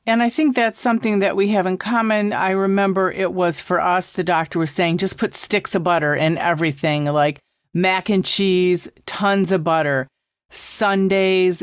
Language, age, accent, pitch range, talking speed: English, 40-59, American, 165-195 Hz, 180 wpm